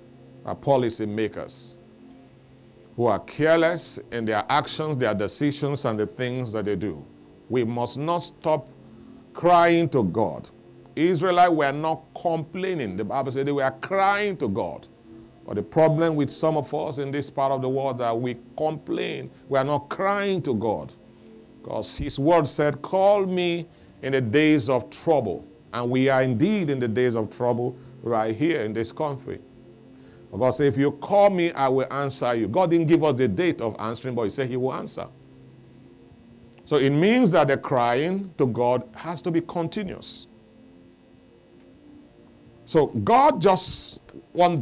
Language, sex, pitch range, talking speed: English, male, 120-165 Hz, 170 wpm